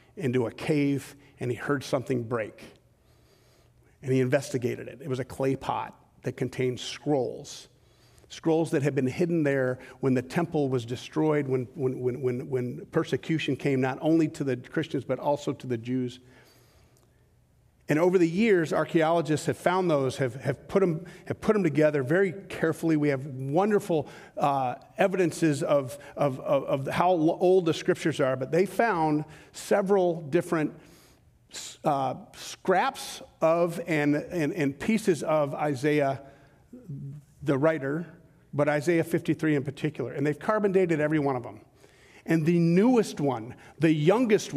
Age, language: 50-69, English